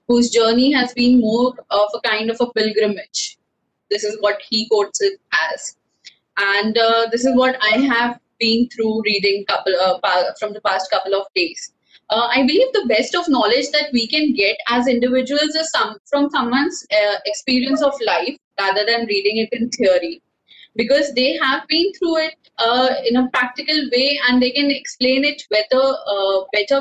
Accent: Indian